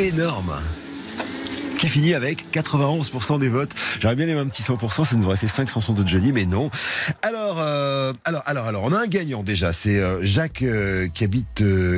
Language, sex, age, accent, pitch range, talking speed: French, male, 40-59, French, 85-125 Hz, 205 wpm